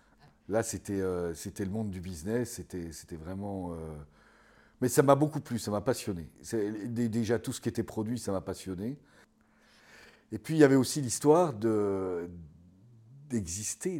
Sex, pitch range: male, 100-140 Hz